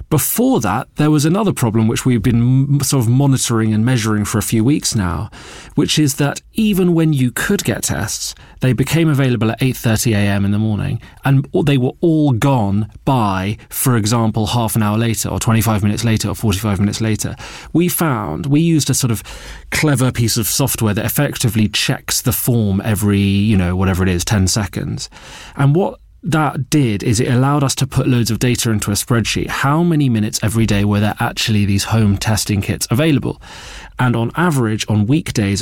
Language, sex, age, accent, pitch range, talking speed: English, male, 30-49, British, 105-135 Hz, 190 wpm